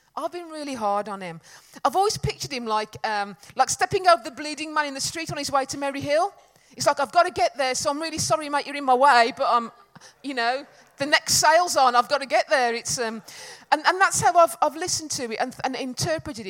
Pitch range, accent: 220-305 Hz, British